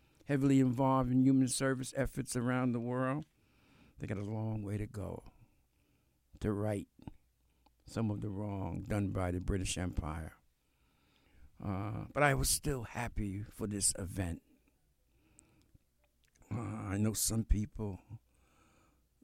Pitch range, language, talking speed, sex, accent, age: 95-125 Hz, English, 130 wpm, male, American, 60-79